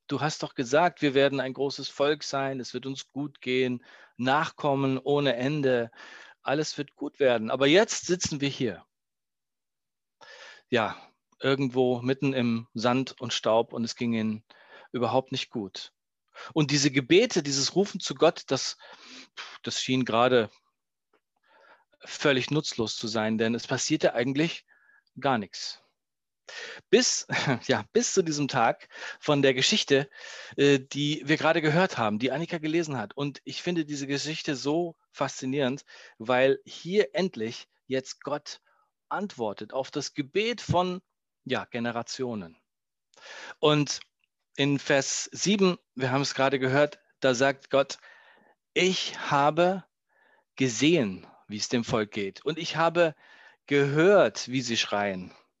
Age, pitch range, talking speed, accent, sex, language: 40-59, 125-155 Hz, 135 wpm, German, male, German